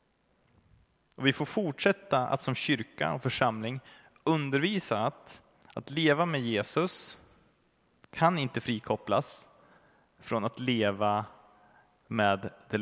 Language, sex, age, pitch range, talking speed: Swedish, male, 30-49, 105-135 Hz, 110 wpm